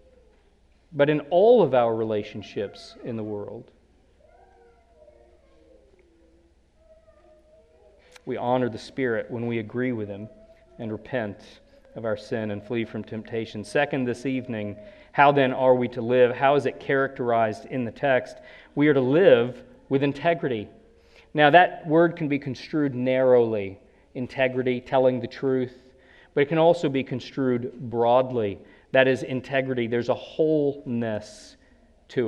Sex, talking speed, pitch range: male, 140 wpm, 115-145 Hz